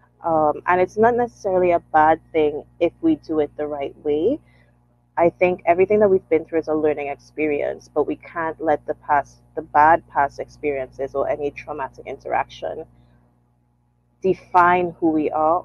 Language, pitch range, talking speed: English, 140-165 Hz, 170 wpm